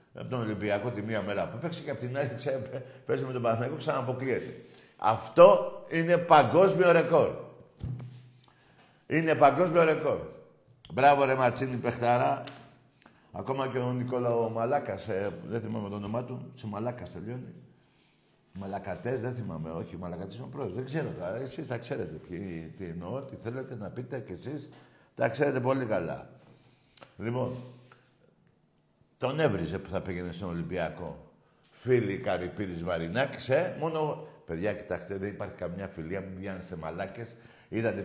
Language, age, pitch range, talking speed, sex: Greek, 60-79, 100-135 Hz, 140 wpm, male